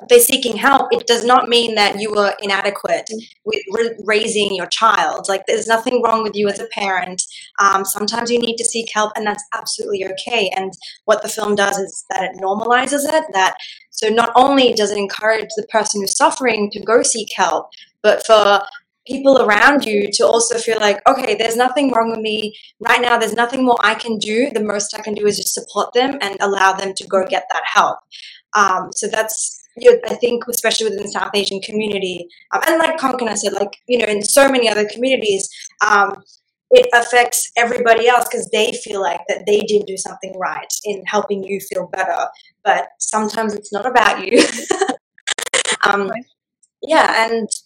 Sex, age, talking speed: female, 20-39, 195 wpm